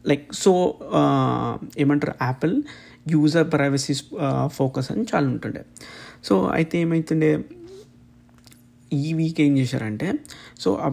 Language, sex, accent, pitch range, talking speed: Telugu, male, native, 130-150 Hz, 100 wpm